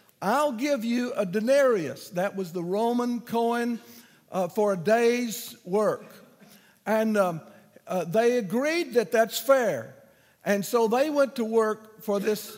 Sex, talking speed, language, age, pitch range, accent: male, 150 wpm, English, 60-79, 195-245 Hz, American